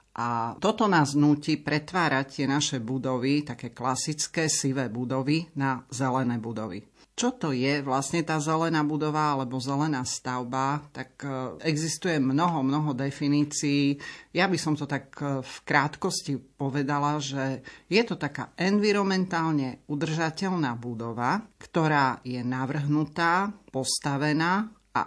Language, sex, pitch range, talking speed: Slovak, male, 135-160 Hz, 120 wpm